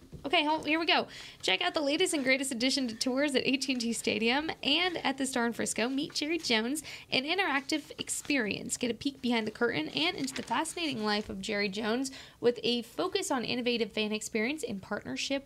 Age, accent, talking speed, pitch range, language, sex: 10-29, American, 200 wpm, 215-280 Hz, English, female